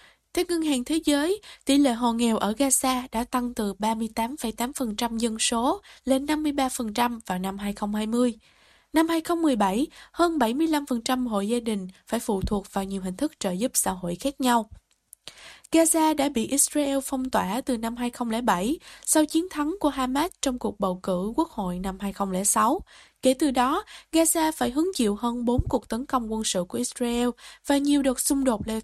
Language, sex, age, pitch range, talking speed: Vietnamese, female, 10-29, 220-290 Hz, 180 wpm